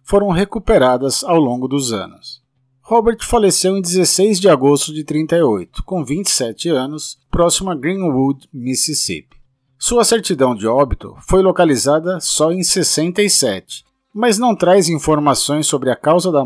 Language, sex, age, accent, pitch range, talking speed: Portuguese, male, 50-69, Brazilian, 135-185 Hz, 140 wpm